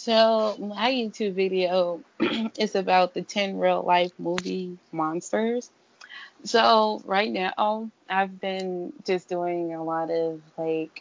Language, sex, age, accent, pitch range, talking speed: English, female, 20-39, American, 170-200 Hz, 120 wpm